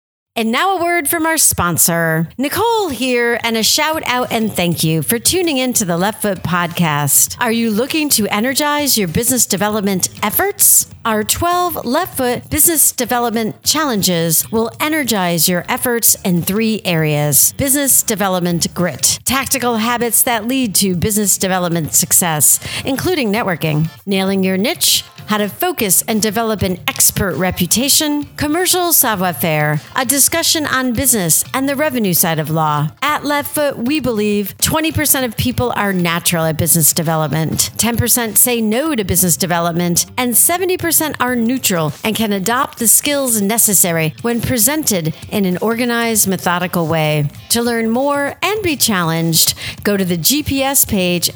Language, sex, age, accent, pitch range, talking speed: English, female, 50-69, American, 175-260 Hz, 150 wpm